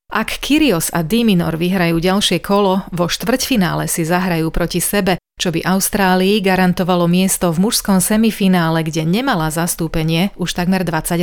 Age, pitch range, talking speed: 30-49, 170-200 Hz, 145 wpm